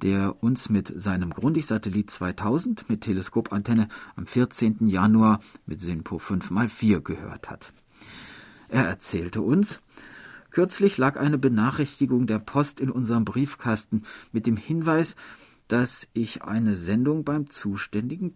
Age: 50-69